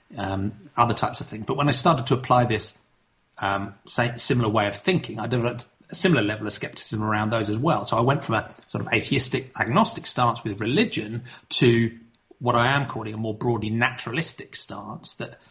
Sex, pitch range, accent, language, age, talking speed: male, 105-125 Hz, British, English, 30-49, 195 wpm